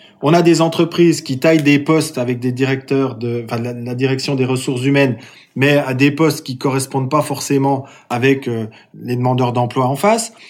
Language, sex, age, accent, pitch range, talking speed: French, male, 20-39, French, 130-185 Hz, 195 wpm